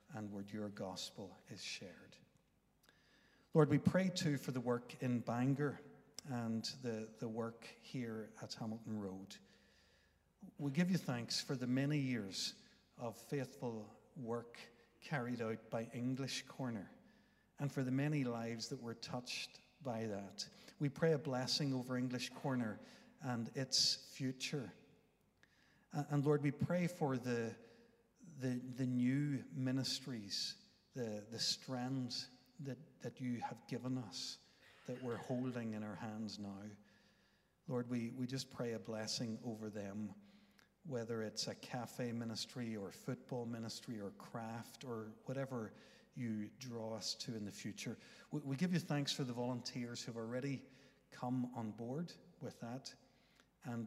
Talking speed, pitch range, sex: 145 wpm, 115-135 Hz, male